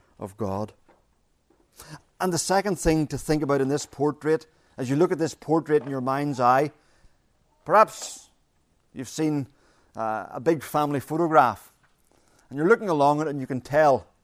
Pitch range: 115-150 Hz